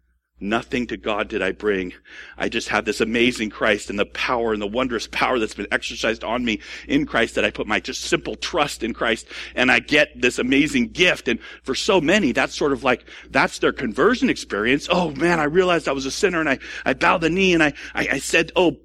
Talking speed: 230 wpm